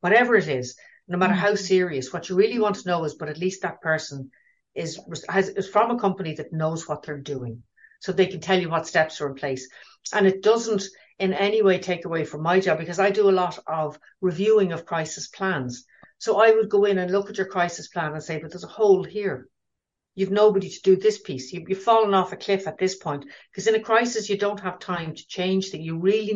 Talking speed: 240 wpm